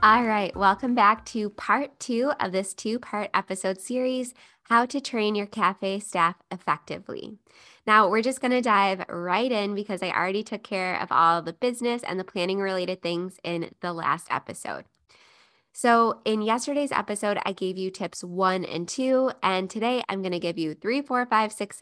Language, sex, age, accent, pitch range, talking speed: English, female, 10-29, American, 190-240 Hz, 180 wpm